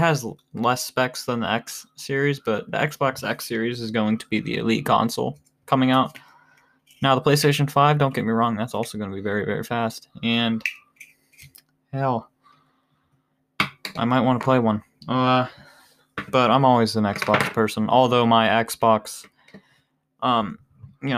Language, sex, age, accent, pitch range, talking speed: English, male, 20-39, American, 115-135 Hz, 160 wpm